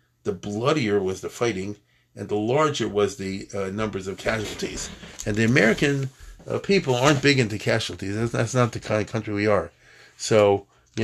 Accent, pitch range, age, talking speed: American, 105-125 Hz, 50-69, 185 wpm